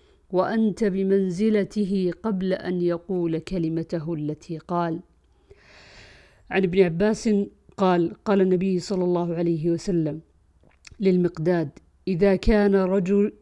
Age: 50-69